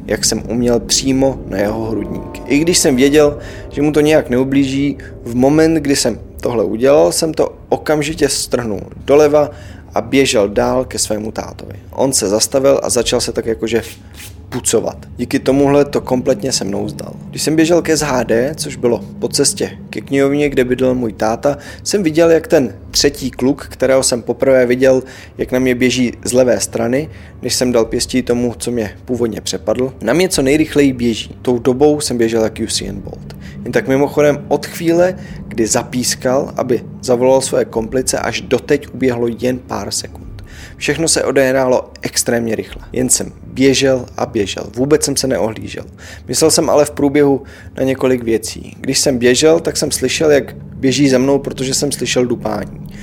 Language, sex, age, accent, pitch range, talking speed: Czech, male, 20-39, native, 110-140 Hz, 175 wpm